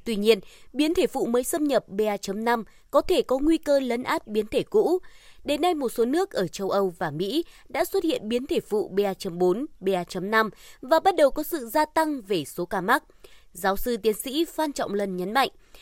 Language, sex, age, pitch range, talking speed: Vietnamese, female, 20-39, 195-305 Hz, 215 wpm